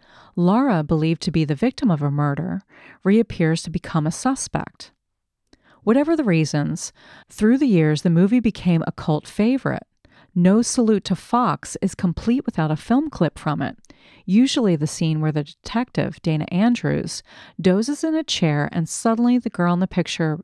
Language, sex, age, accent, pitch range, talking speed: English, female, 40-59, American, 160-225 Hz, 165 wpm